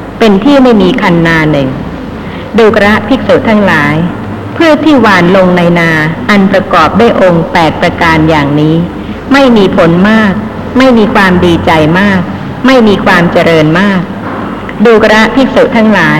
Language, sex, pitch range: Thai, female, 175-225 Hz